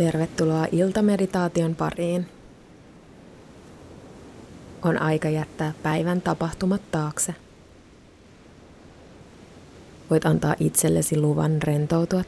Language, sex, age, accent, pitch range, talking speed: Finnish, female, 20-39, native, 155-175 Hz, 70 wpm